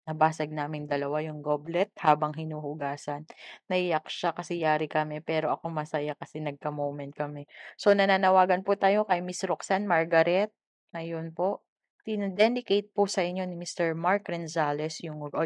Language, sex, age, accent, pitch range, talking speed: Filipino, female, 20-39, native, 165-200 Hz, 150 wpm